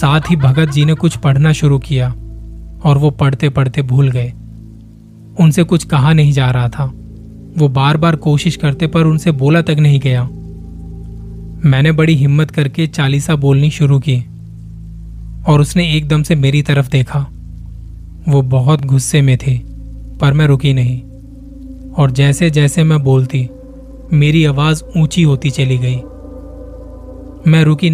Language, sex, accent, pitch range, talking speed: Hindi, male, native, 120-150 Hz, 150 wpm